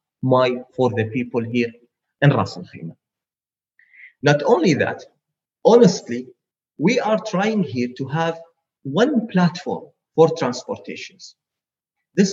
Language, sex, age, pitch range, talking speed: English, male, 30-49, 130-175 Hz, 105 wpm